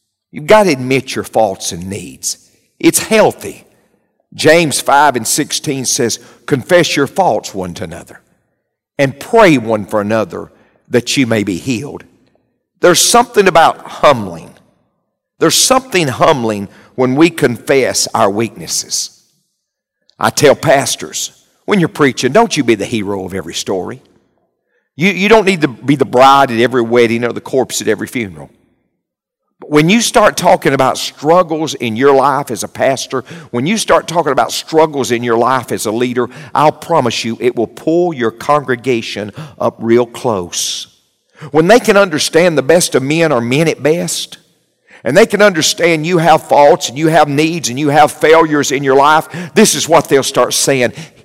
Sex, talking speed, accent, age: male, 170 wpm, American, 50-69